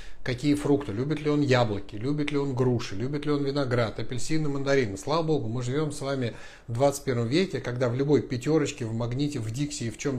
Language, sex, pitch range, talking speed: Russian, male, 115-140 Hz, 220 wpm